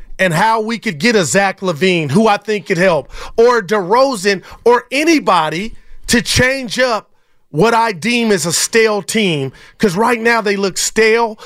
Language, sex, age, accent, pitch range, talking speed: English, male, 40-59, American, 180-235 Hz, 175 wpm